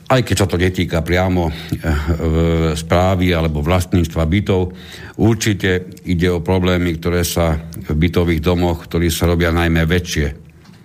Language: Slovak